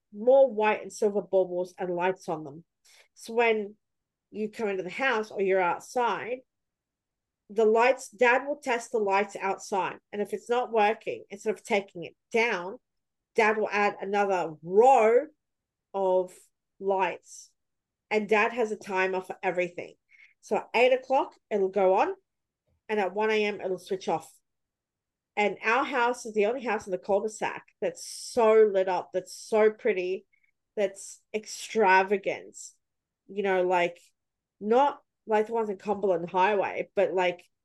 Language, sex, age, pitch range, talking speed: English, female, 40-59, 190-240 Hz, 150 wpm